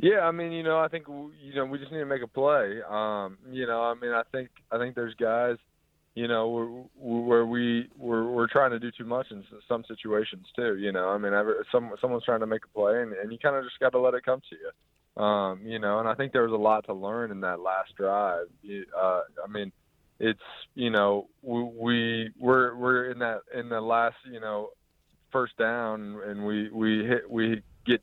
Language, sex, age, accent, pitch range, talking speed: English, male, 20-39, American, 105-120 Hz, 230 wpm